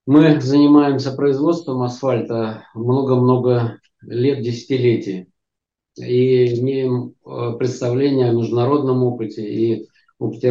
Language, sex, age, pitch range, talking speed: Russian, male, 50-69, 115-135 Hz, 85 wpm